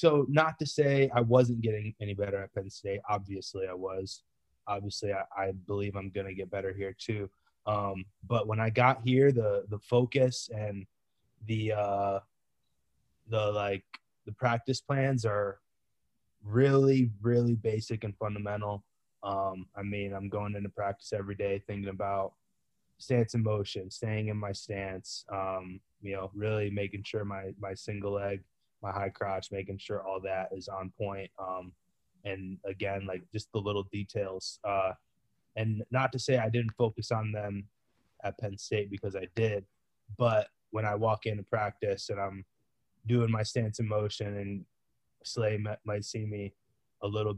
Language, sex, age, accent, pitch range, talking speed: English, male, 20-39, American, 100-115 Hz, 165 wpm